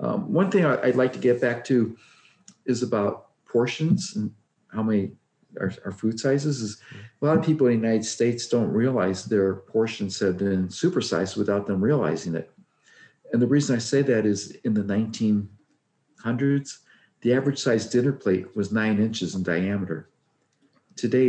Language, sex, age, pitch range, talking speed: English, male, 50-69, 105-135 Hz, 170 wpm